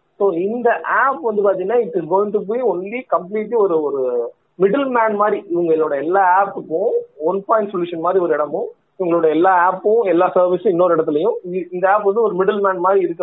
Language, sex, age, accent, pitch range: Tamil, male, 30-49, native, 175-240 Hz